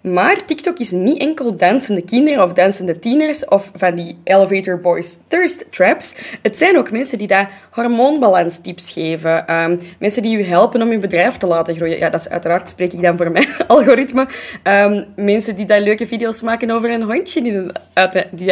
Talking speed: 190 wpm